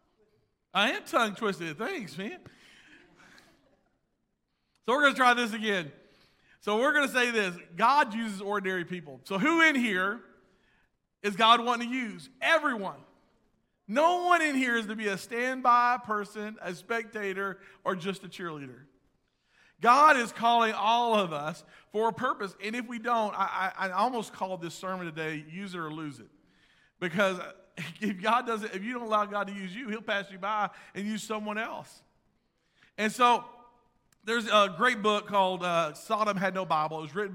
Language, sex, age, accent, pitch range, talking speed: English, male, 40-59, American, 160-220 Hz, 175 wpm